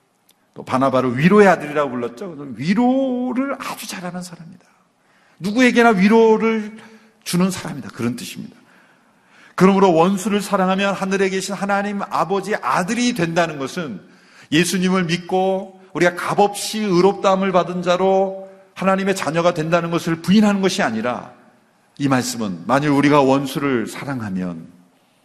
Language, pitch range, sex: Korean, 135-205 Hz, male